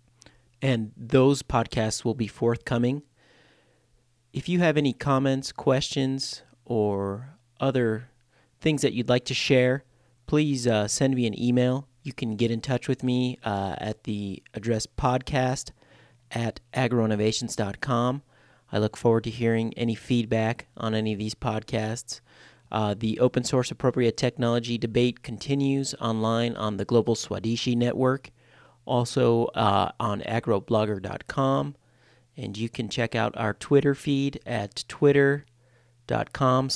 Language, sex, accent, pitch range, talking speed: English, male, American, 110-125 Hz, 130 wpm